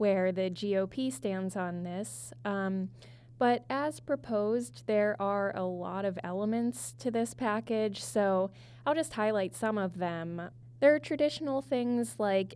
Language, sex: English, female